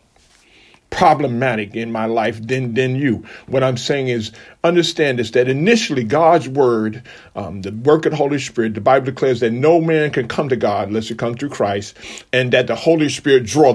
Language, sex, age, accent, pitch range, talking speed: English, male, 50-69, American, 125-165 Hz, 195 wpm